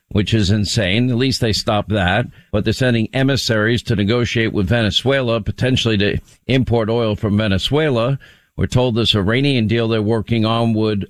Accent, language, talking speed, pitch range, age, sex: American, English, 170 wpm, 110-130 Hz, 50-69, male